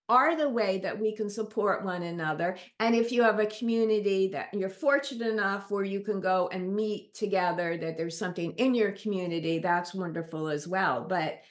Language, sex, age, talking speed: English, female, 50-69, 195 wpm